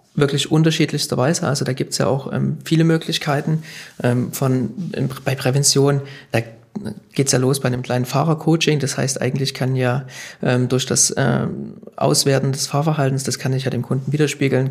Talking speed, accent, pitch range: 180 wpm, German, 125-145 Hz